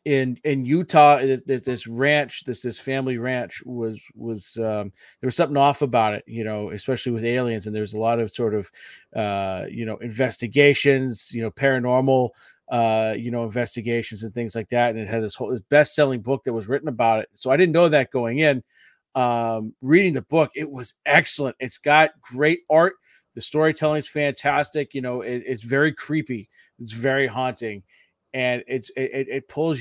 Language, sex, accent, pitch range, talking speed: English, male, American, 115-140 Hz, 185 wpm